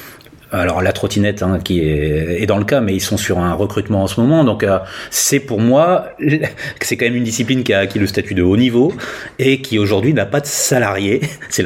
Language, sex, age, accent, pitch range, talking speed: French, male, 30-49, French, 105-140 Hz, 230 wpm